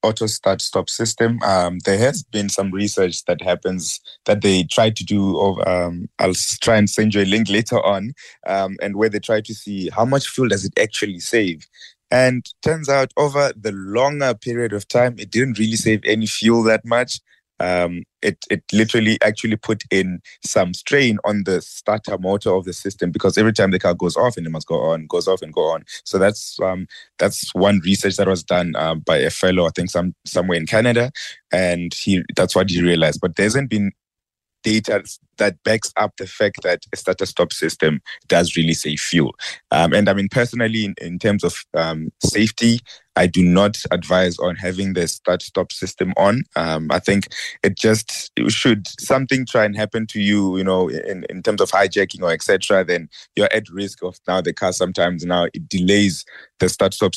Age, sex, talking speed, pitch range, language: 20-39, male, 195 wpm, 90-110 Hz, English